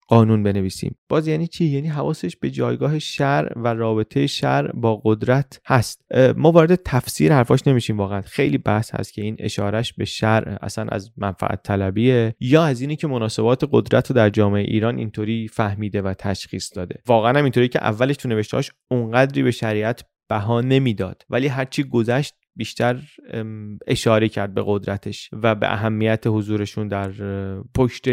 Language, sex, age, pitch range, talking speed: Persian, male, 30-49, 105-130 Hz, 150 wpm